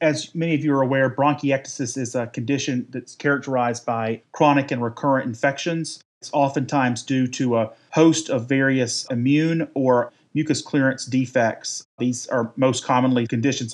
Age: 30-49